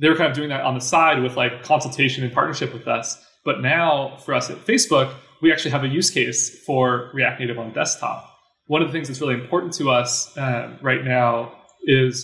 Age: 20-39